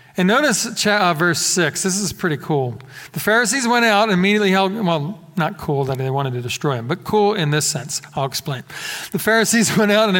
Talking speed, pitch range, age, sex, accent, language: 210 wpm, 150-200 Hz, 40-59, male, American, English